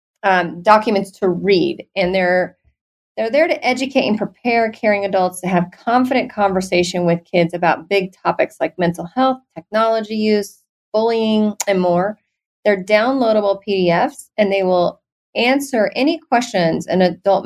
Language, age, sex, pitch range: English, 30-49, female, 180-220 Hz